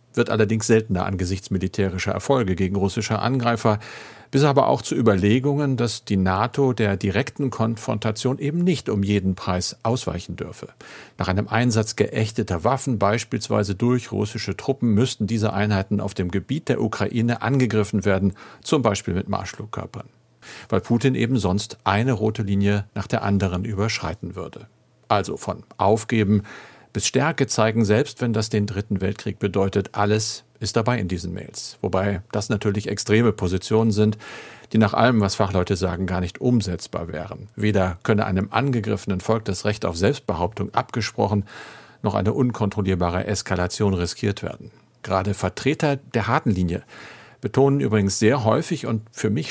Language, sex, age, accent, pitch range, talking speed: German, male, 50-69, German, 100-120 Hz, 150 wpm